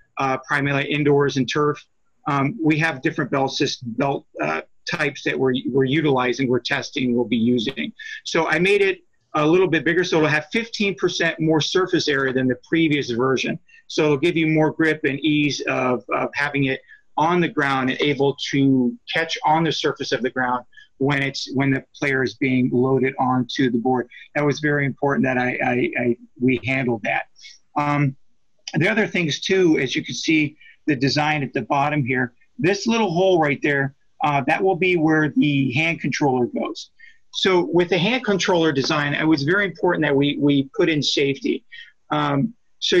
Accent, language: American, English